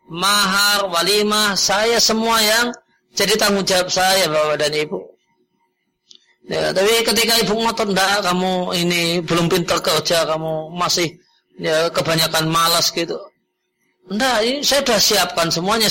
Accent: native